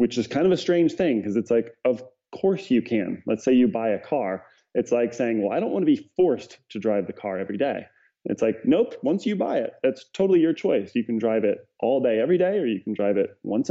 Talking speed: 265 wpm